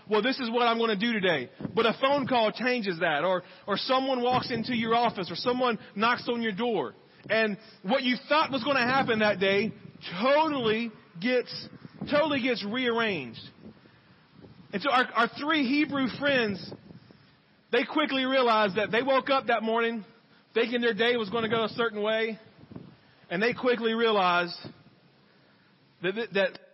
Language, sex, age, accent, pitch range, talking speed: English, male, 40-59, American, 210-270 Hz, 165 wpm